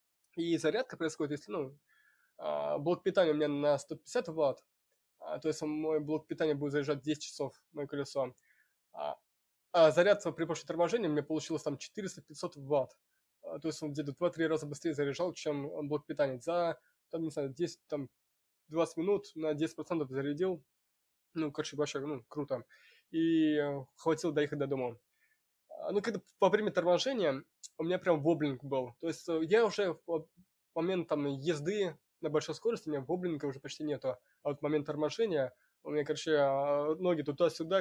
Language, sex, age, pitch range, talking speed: Russian, male, 20-39, 145-165 Hz, 160 wpm